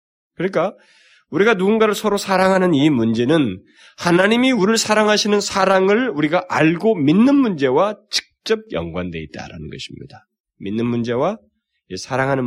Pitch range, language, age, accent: 120-195 Hz, Korean, 20-39, native